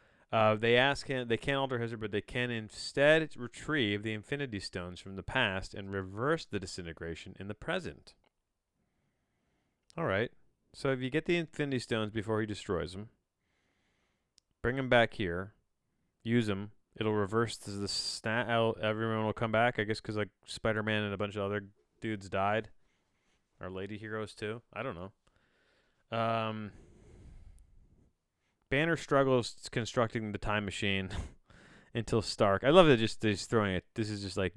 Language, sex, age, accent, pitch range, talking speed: English, male, 30-49, American, 95-115 Hz, 160 wpm